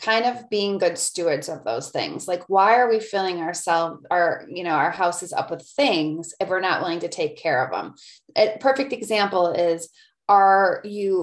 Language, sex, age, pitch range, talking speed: English, female, 30-49, 165-200 Hz, 200 wpm